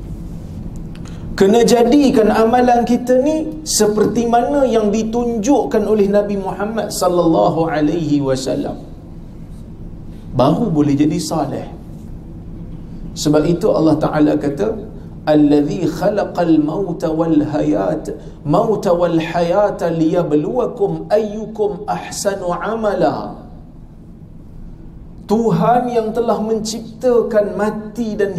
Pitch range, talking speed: 150-220 Hz, 90 wpm